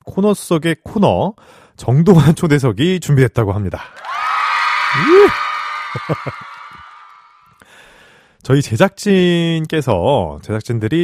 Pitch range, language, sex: 90-145 Hz, Korean, male